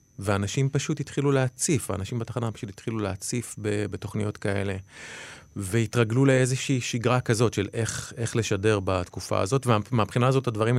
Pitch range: 110-135 Hz